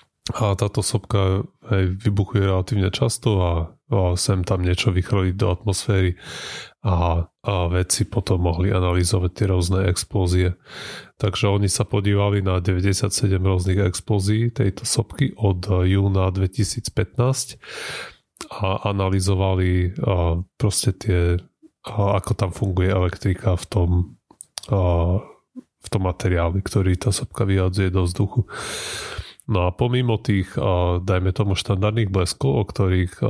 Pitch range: 90-105 Hz